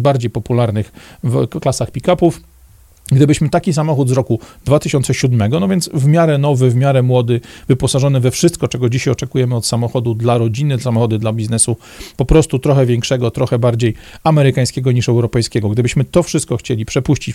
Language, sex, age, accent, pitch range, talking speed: Polish, male, 40-59, native, 115-145 Hz, 160 wpm